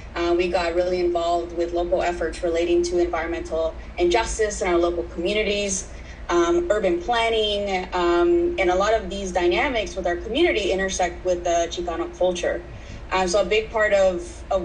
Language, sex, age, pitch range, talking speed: English, female, 20-39, 175-200 Hz, 170 wpm